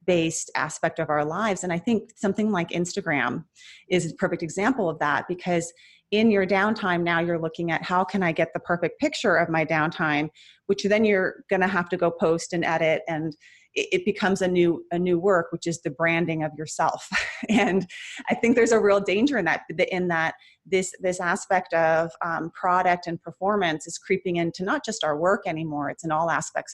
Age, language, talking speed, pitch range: 30-49, English, 205 wpm, 160-190 Hz